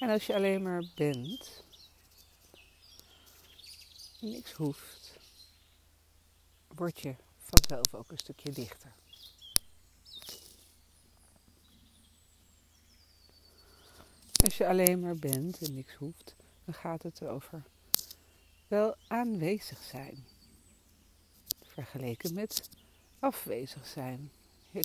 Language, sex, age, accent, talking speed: Dutch, female, 60-79, Dutch, 85 wpm